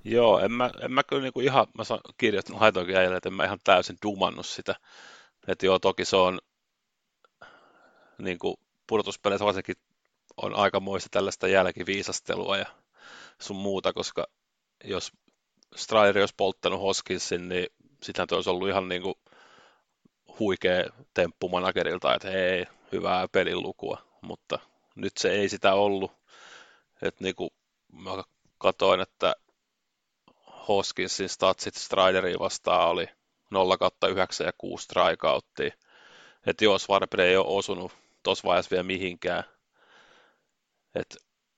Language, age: Finnish, 30-49